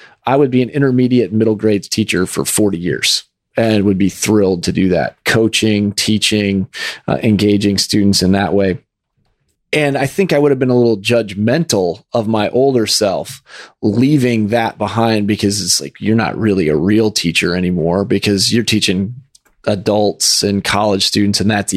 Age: 30-49